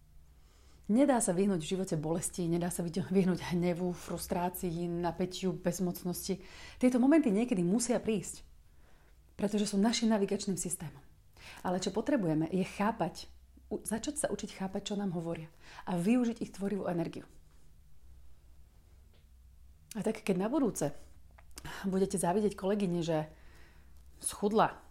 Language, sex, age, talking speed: Slovak, female, 30-49, 120 wpm